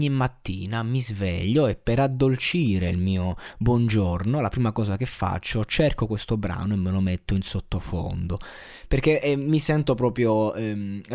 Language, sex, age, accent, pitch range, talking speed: Italian, male, 20-39, native, 95-125 Hz, 160 wpm